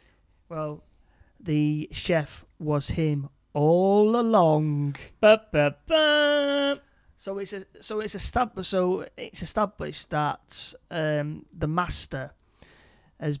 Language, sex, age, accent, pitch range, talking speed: English, male, 30-49, British, 140-160 Hz, 110 wpm